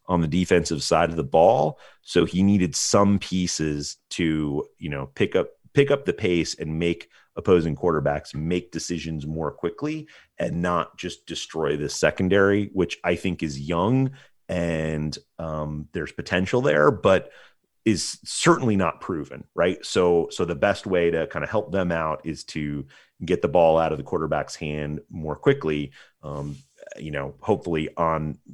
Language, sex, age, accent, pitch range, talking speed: English, male, 30-49, American, 75-95 Hz, 165 wpm